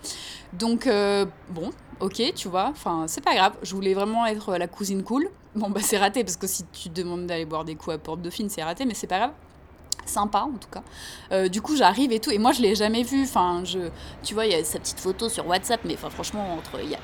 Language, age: French, 20-39